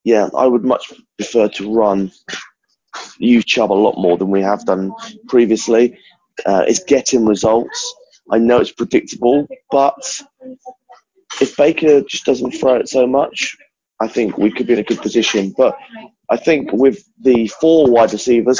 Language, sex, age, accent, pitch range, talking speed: English, male, 20-39, British, 110-150 Hz, 165 wpm